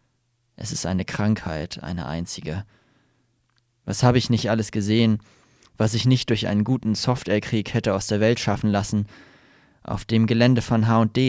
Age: 20-39